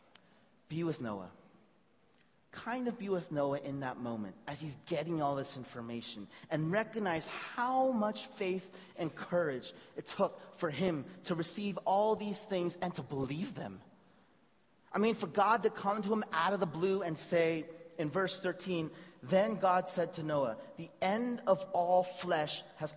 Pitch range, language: 145-190 Hz, English